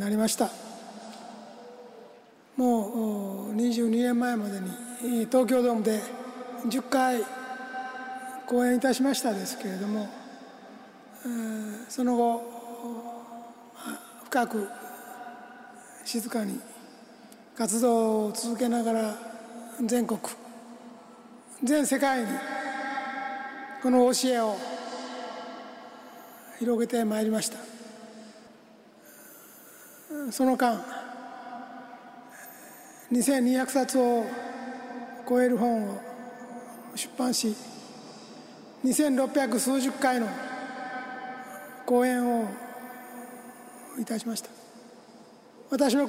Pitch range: 235-255 Hz